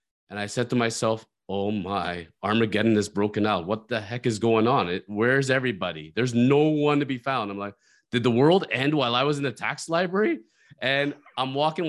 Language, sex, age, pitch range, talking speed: English, male, 30-49, 110-140 Hz, 205 wpm